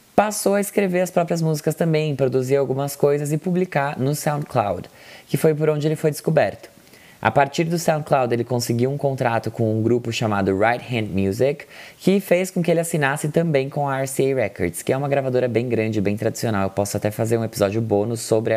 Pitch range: 110-145 Hz